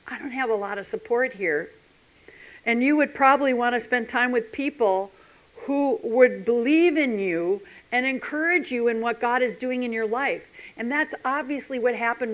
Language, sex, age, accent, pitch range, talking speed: English, female, 50-69, American, 205-270 Hz, 190 wpm